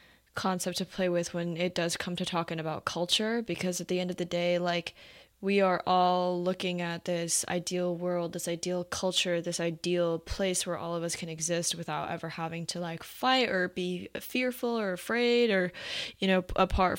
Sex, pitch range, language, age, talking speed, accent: female, 175-195 Hz, English, 10-29, 195 wpm, American